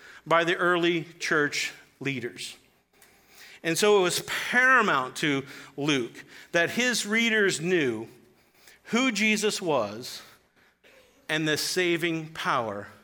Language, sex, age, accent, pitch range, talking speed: English, male, 40-59, American, 150-195 Hz, 105 wpm